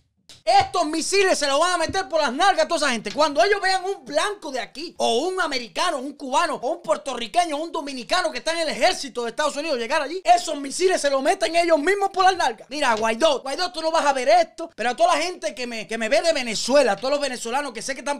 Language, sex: Spanish, male